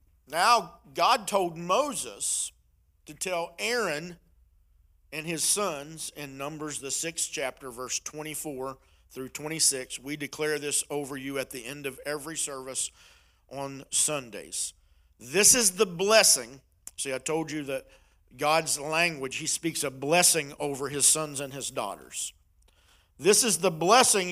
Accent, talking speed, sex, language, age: American, 140 wpm, male, English, 50-69